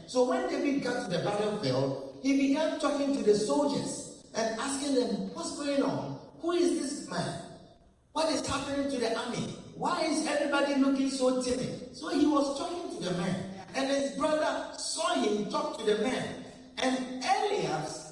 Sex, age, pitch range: male, 40-59, 230-300 Hz